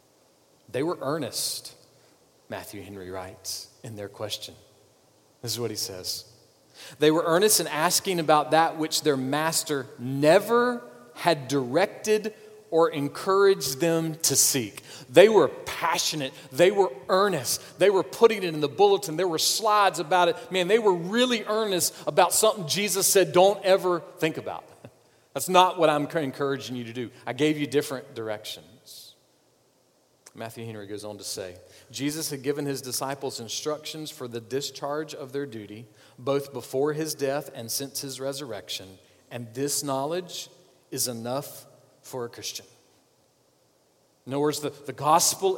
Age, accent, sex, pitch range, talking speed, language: 40-59, American, male, 125-170 Hz, 155 wpm, English